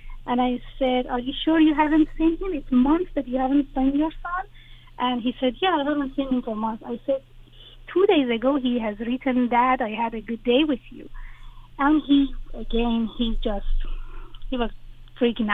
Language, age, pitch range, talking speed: English, 30-49, 225-280 Hz, 200 wpm